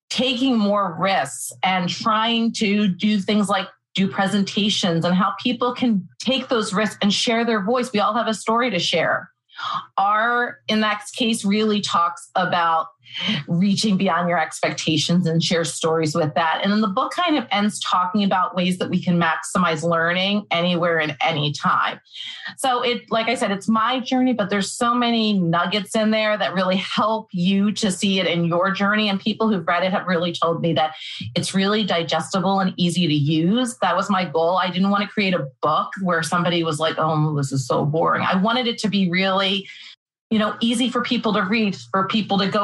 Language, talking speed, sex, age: English, 200 wpm, female, 30-49